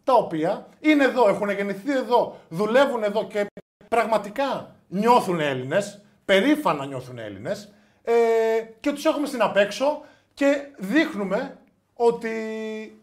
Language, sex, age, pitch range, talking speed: Greek, male, 20-39, 165-215 Hz, 115 wpm